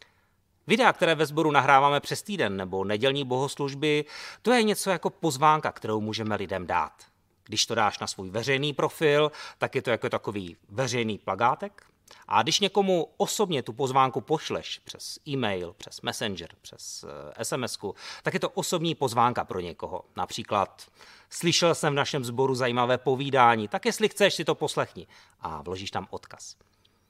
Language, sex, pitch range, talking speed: Czech, male, 110-155 Hz, 155 wpm